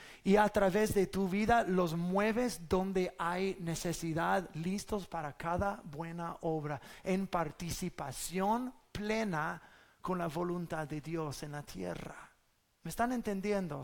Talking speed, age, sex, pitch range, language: 130 wpm, 30-49, male, 170-215 Hz, English